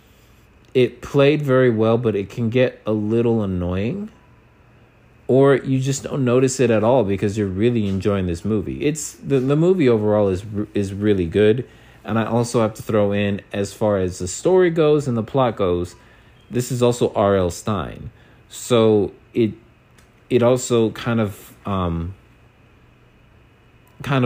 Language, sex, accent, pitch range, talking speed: English, male, American, 95-120 Hz, 160 wpm